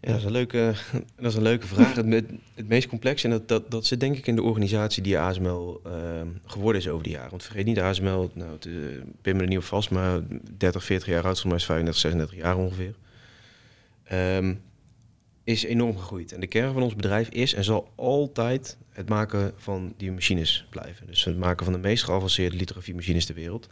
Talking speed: 215 wpm